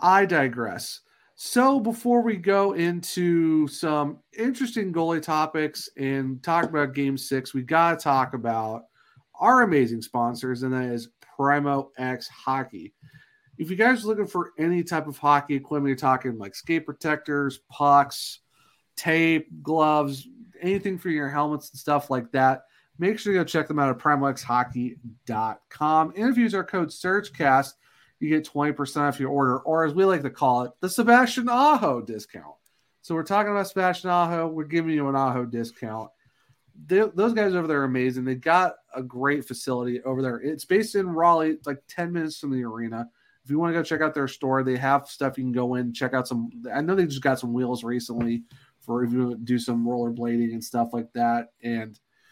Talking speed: 185 wpm